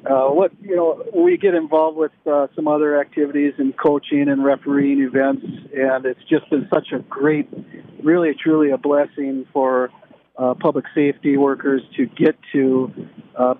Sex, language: male, English